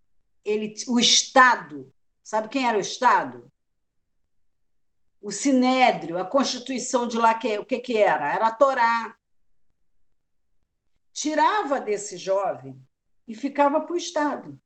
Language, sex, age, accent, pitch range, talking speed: Portuguese, female, 50-69, Brazilian, 210-295 Hz, 115 wpm